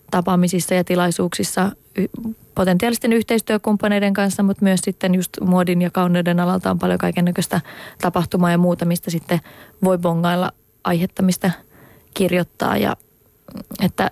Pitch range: 175-205 Hz